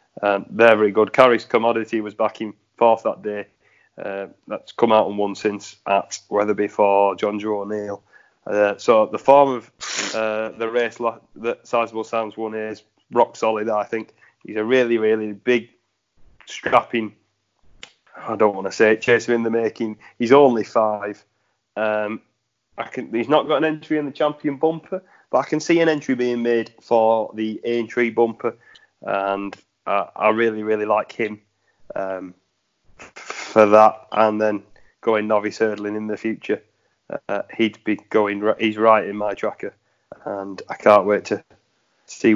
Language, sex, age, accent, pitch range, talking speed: English, male, 30-49, British, 105-120 Hz, 170 wpm